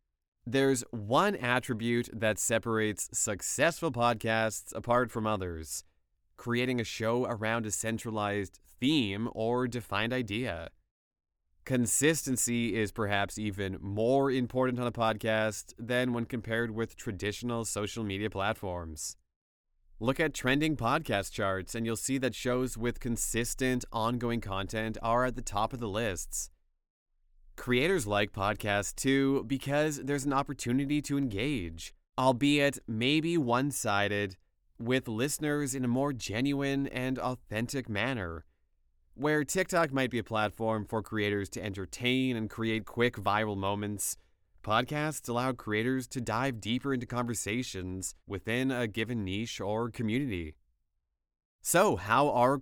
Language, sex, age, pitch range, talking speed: English, male, 20-39, 100-125 Hz, 130 wpm